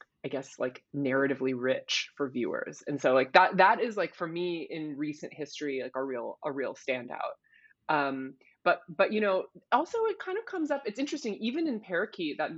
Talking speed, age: 200 wpm, 20-39